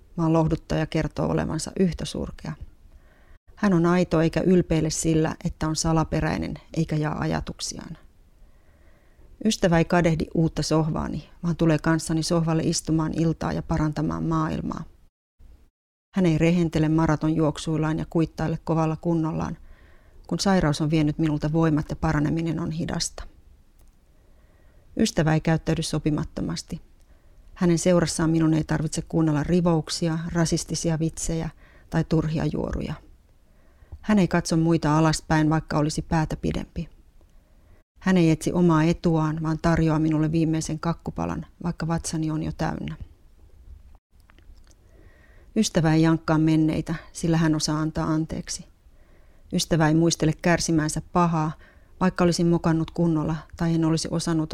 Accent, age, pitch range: native, 30-49, 105-165 Hz